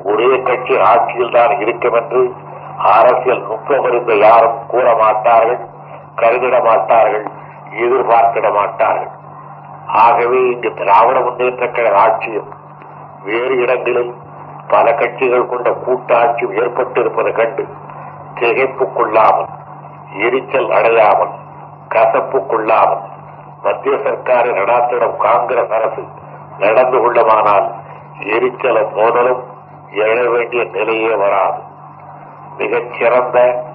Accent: native